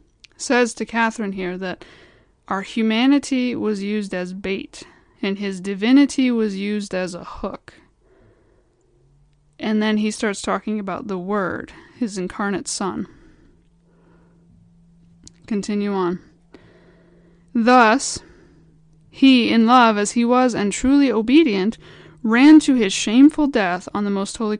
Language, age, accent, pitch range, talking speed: English, 20-39, American, 195-250 Hz, 125 wpm